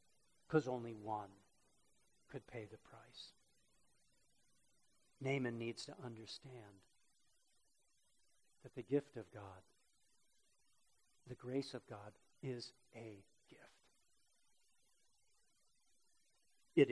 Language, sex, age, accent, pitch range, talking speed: English, male, 50-69, American, 115-145 Hz, 85 wpm